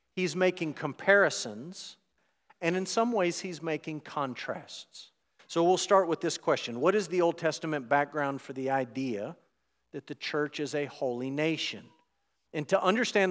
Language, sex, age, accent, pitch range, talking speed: English, male, 50-69, American, 140-175 Hz, 160 wpm